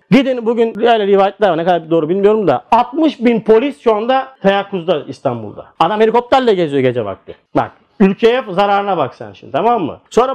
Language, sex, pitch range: Turkish, male, 195-235 Hz